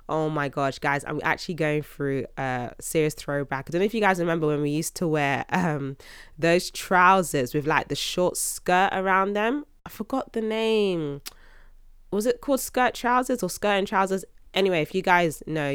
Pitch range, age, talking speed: 140-175 Hz, 20-39, 195 wpm